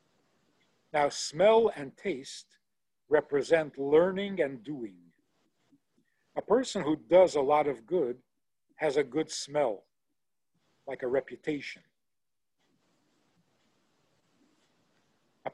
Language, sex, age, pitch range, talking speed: English, male, 50-69, 140-180 Hz, 95 wpm